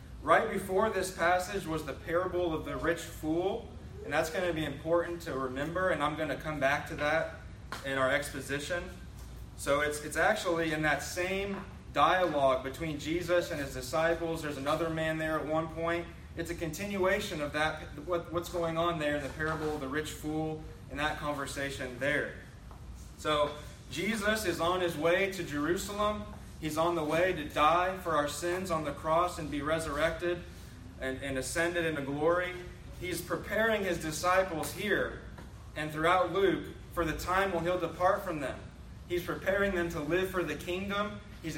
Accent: American